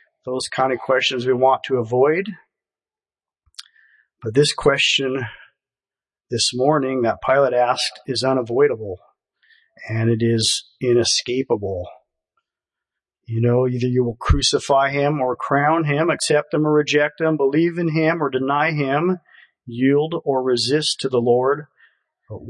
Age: 50-69